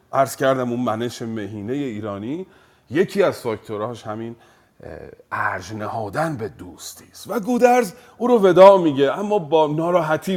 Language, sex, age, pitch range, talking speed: Persian, male, 40-59, 120-195 Hz, 135 wpm